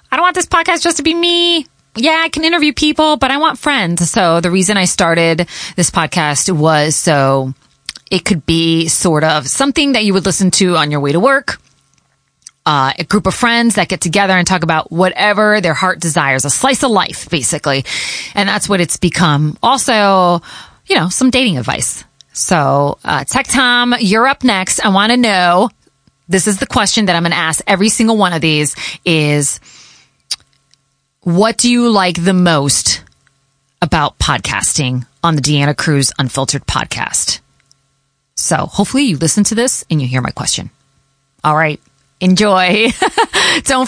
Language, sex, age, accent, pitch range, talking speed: English, female, 30-49, American, 160-240 Hz, 175 wpm